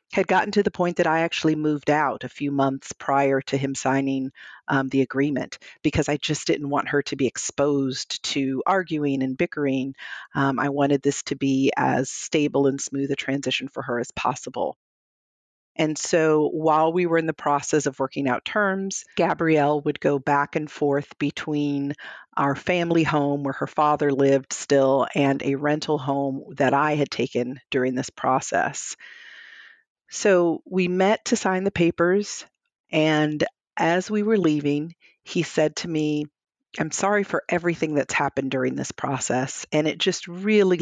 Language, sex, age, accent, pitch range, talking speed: English, female, 40-59, American, 140-175 Hz, 170 wpm